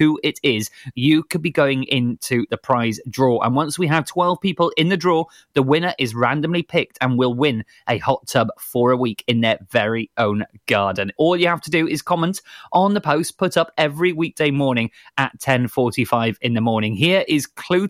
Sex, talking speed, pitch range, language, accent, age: male, 210 wpm, 125-180 Hz, English, British, 30-49